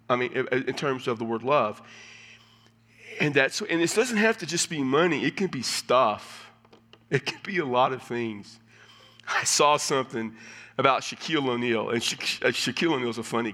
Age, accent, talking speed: 40-59, American, 185 wpm